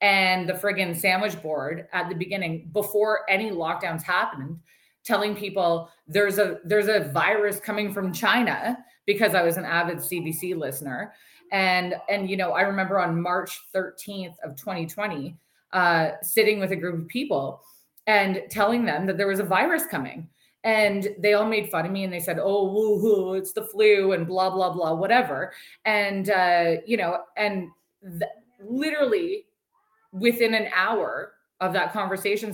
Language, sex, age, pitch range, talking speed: English, female, 20-39, 180-215 Hz, 165 wpm